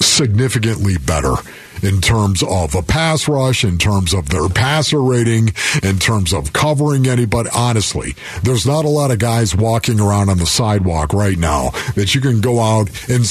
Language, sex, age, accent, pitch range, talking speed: English, male, 50-69, American, 100-135 Hz, 175 wpm